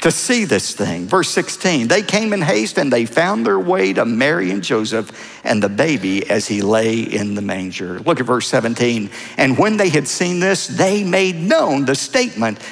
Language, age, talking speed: English, 50-69, 205 wpm